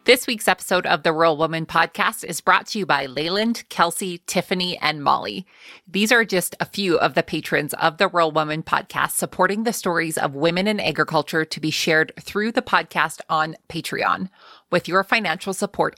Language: English